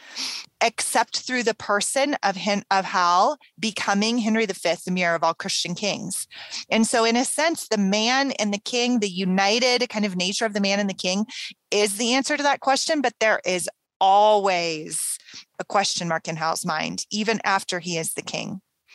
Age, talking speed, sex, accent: 30-49, 190 wpm, female, American